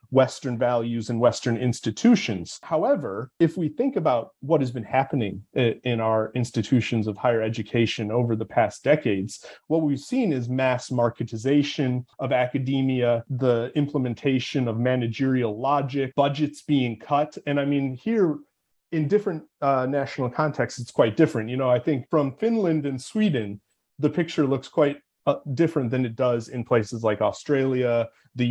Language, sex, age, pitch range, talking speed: English, male, 30-49, 120-150 Hz, 155 wpm